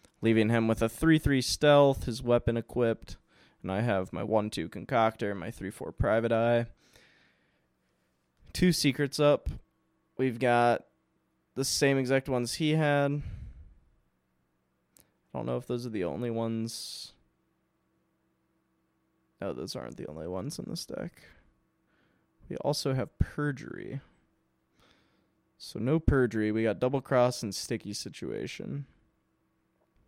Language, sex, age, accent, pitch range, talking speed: English, male, 20-39, American, 100-135 Hz, 130 wpm